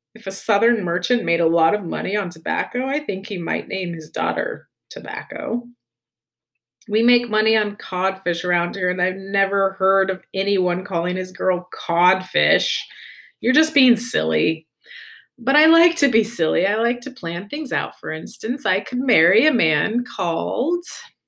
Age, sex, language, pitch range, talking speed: 30-49, female, English, 185-245 Hz, 170 wpm